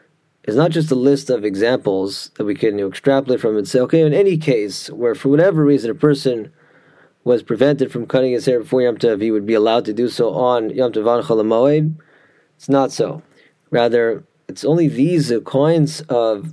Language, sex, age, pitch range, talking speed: English, male, 30-49, 120-145 Hz, 190 wpm